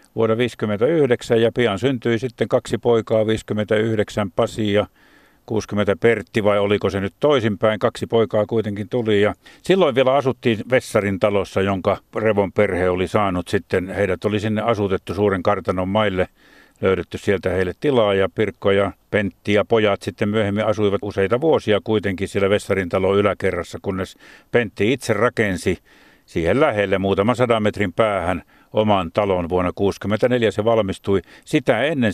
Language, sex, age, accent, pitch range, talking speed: Finnish, male, 50-69, native, 100-115 Hz, 150 wpm